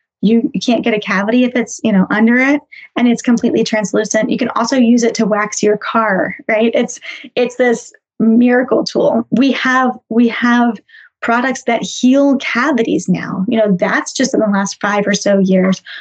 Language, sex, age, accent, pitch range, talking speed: English, female, 10-29, American, 210-260 Hz, 185 wpm